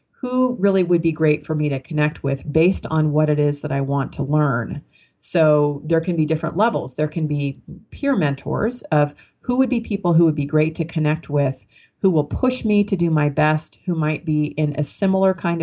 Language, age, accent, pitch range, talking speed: English, 40-59, American, 145-175 Hz, 225 wpm